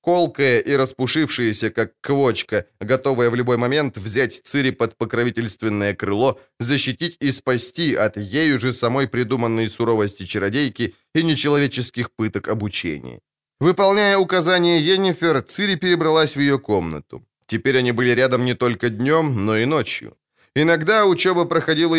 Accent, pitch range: native, 110-145 Hz